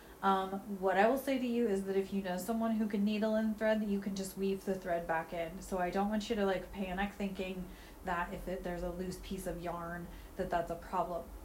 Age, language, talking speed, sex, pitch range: 30-49, English, 250 wpm, female, 185-220 Hz